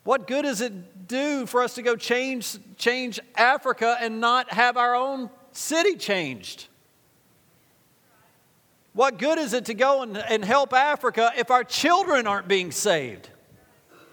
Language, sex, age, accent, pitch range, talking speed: English, male, 40-59, American, 150-240 Hz, 150 wpm